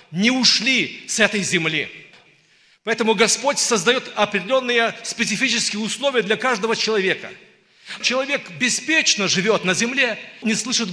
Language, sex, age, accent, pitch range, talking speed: Russian, male, 40-59, native, 185-230 Hz, 115 wpm